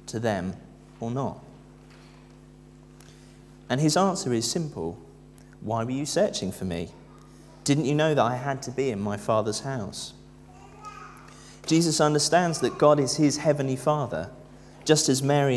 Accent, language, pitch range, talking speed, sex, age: British, English, 110-140 Hz, 145 wpm, male, 30-49